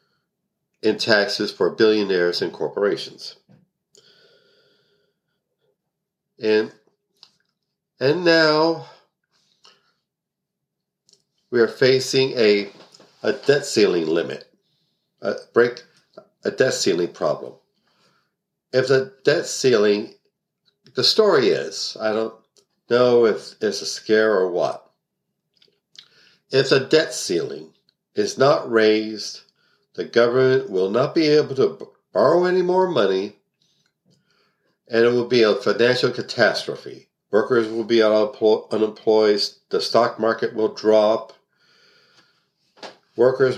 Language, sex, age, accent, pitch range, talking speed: English, male, 60-79, American, 110-165 Hz, 100 wpm